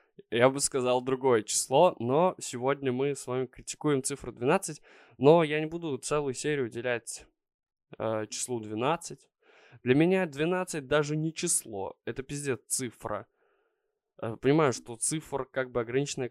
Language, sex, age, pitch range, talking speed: Russian, male, 20-39, 115-160 Hz, 145 wpm